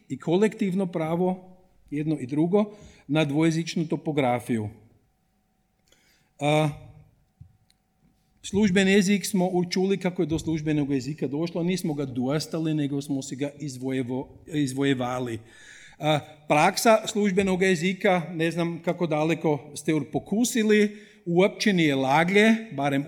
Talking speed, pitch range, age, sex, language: 115 wpm, 155-205 Hz, 50-69, male, German